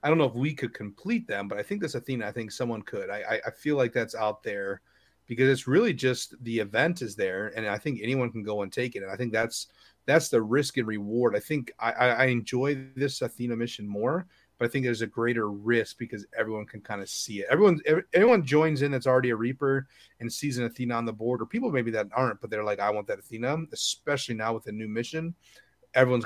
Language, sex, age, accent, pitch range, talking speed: English, male, 30-49, American, 110-135 Hz, 245 wpm